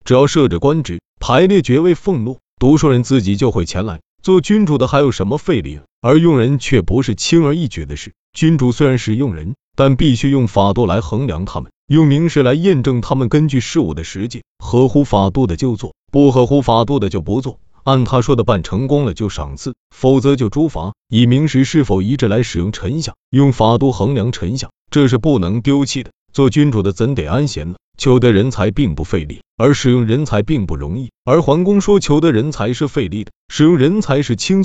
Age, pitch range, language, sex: 30-49, 115-150 Hz, Chinese, male